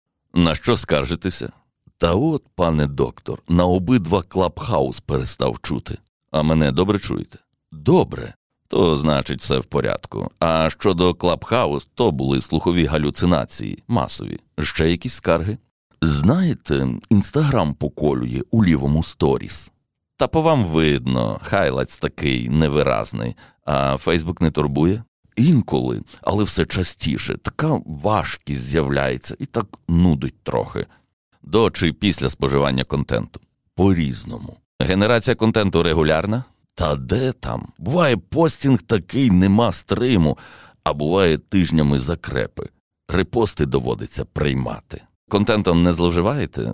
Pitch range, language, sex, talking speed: 70-95 Hz, Ukrainian, male, 115 wpm